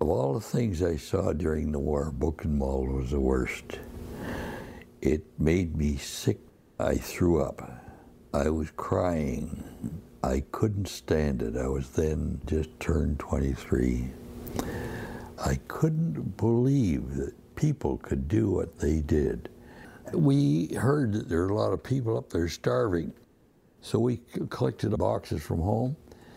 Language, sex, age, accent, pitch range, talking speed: English, male, 60-79, American, 70-95 Hz, 140 wpm